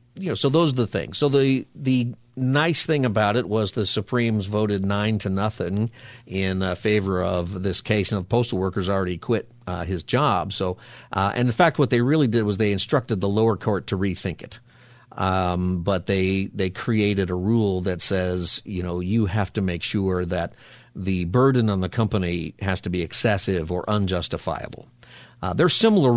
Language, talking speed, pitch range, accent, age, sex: English, 200 wpm, 95-120 Hz, American, 50-69, male